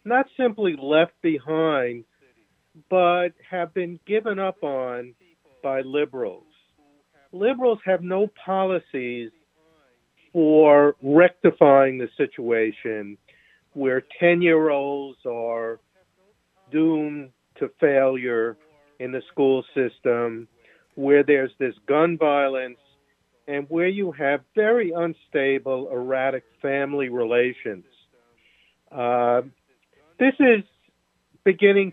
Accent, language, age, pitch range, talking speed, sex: American, English, 50-69, 130-175 Hz, 95 wpm, male